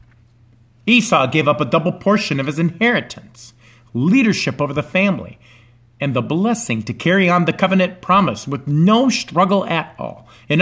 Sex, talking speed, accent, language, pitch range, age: male, 160 wpm, American, English, 120-160 Hz, 50-69